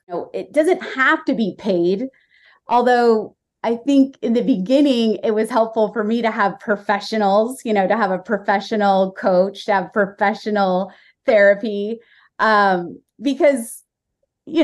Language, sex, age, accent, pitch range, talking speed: English, female, 30-49, American, 205-270 Hz, 145 wpm